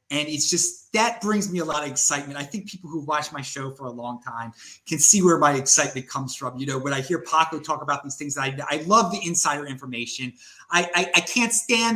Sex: male